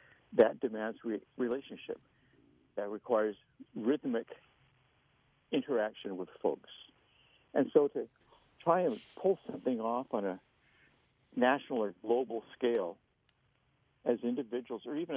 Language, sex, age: English, male, 60-79